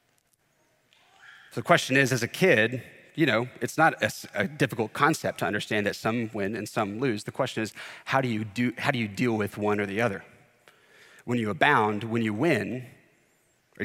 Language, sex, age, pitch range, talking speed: English, male, 30-49, 115-145 Hz, 200 wpm